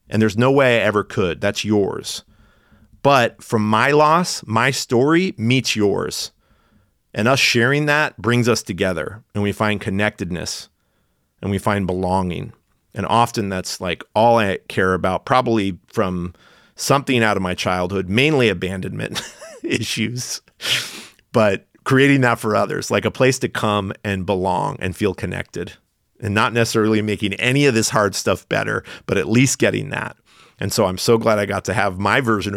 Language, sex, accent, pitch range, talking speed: English, male, American, 100-120 Hz, 170 wpm